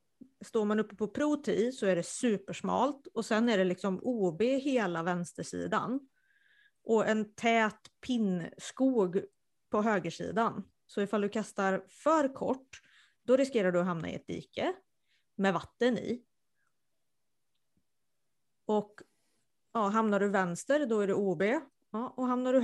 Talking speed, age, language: 140 wpm, 30-49, Swedish